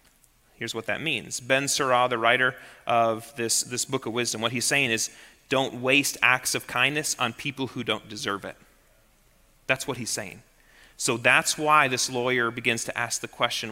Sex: male